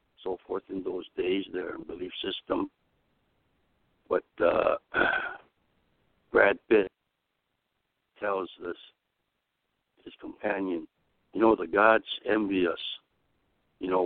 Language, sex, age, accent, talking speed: English, male, 60-79, American, 100 wpm